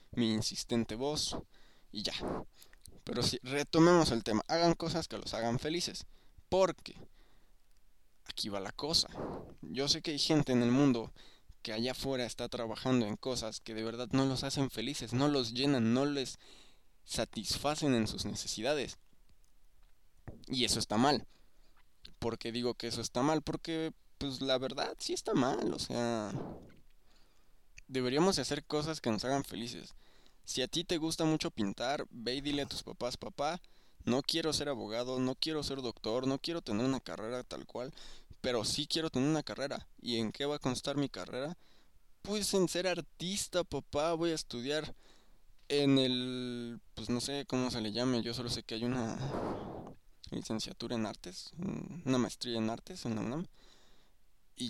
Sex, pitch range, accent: male, 120-150 Hz, Mexican